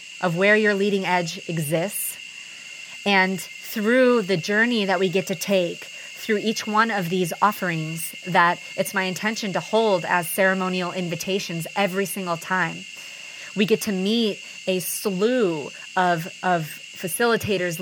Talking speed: 140 wpm